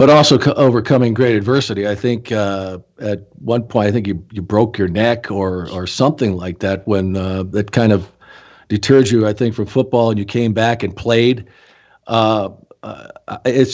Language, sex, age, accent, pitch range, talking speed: English, male, 50-69, American, 105-130 Hz, 190 wpm